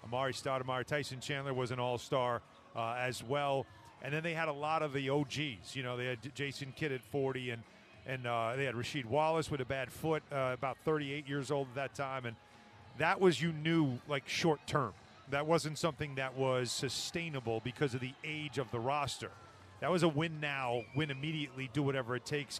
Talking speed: 190 wpm